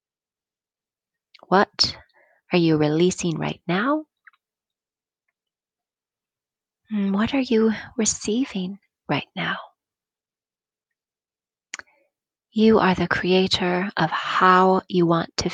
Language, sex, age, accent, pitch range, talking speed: English, female, 30-49, American, 180-220 Hz, 80 wpm